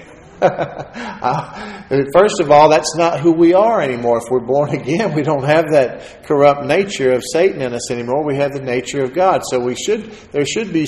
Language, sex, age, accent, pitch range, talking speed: English, male, 50-69, American, 120-150 Hz, 200 wpm